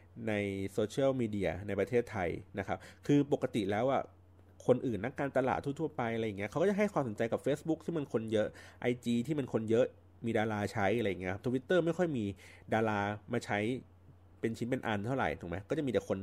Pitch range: 95-125 Hz